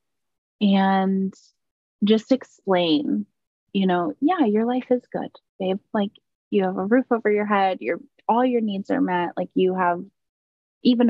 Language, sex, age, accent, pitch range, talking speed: English, female, 20-39, American, 175-210 Hz, 155 wpm